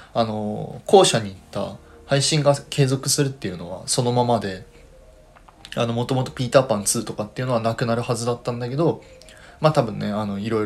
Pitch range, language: 100-140 Hz, Japanese